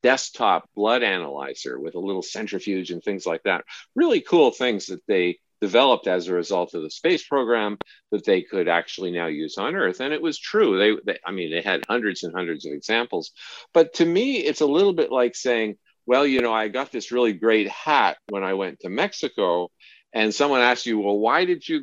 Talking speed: 215 wpm